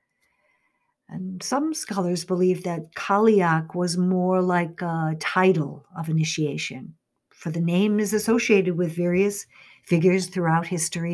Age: 60-79